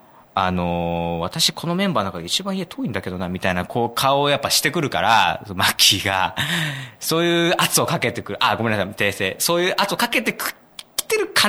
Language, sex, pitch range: Japanese, male, 95-155 Hz